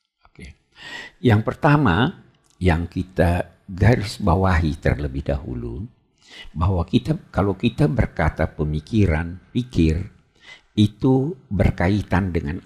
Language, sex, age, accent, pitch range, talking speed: Indonesian, male, 60-79, native, 80-110 Hz, 85 wpm